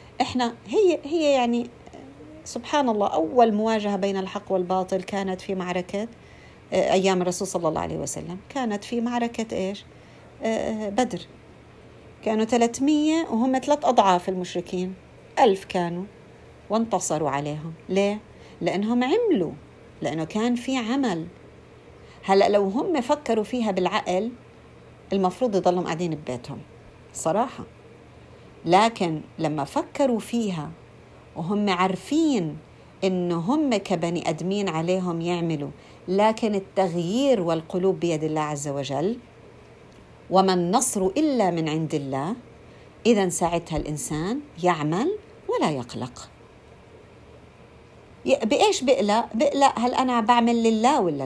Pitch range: 175-245 Hz